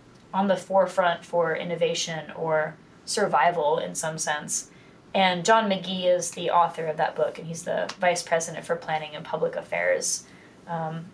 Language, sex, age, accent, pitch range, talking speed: English, female, 20-39, American, 170-195 Hz, 160 wpm